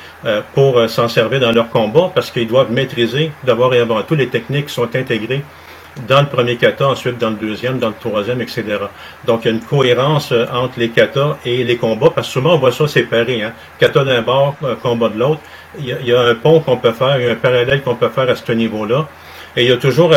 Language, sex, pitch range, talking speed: French, male, 115-140 Hz, 245 wpm